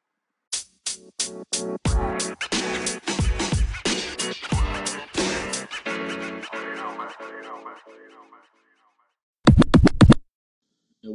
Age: 30-49